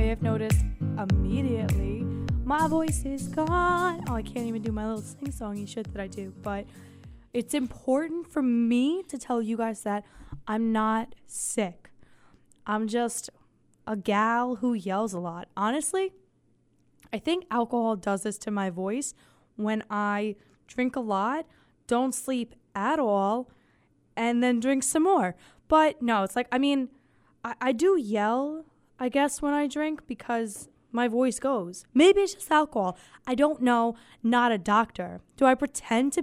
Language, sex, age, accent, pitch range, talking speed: English, female, 10-29, American, 215-280 Hz, 160 wpm